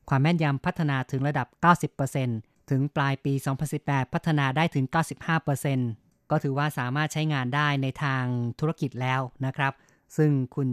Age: 20-39